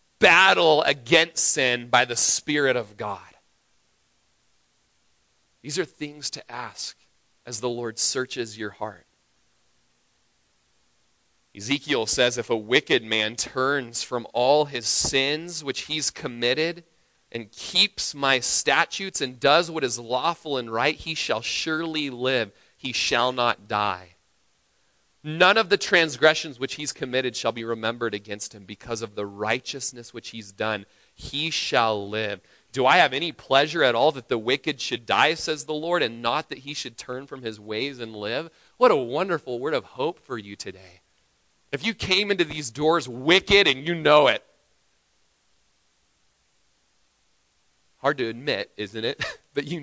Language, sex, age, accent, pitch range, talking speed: English, male, 30-49, American, 105-155 Hz, 155 wpm